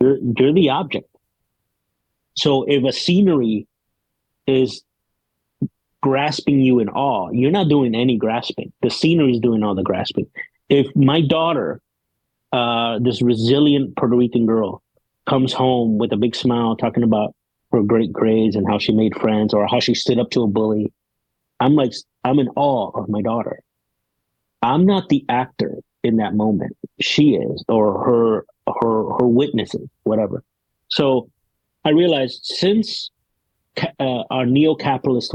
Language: English